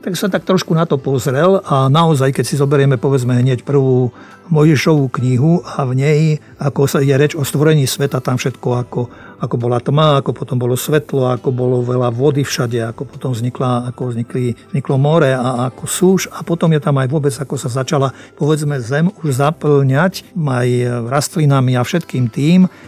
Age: 50-69